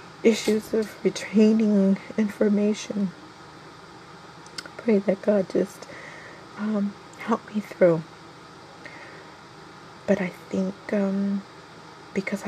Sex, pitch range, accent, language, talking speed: female, 165-200 Hz, American, English, 80 wpm